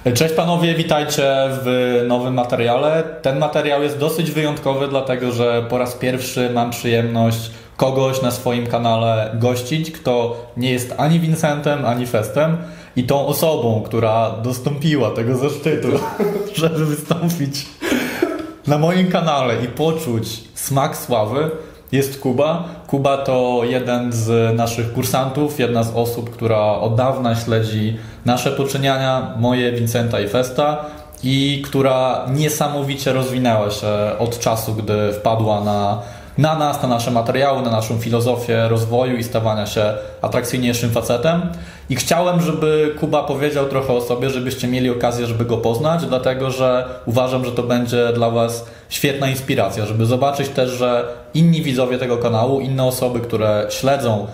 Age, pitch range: 20-39, 115-145 Hz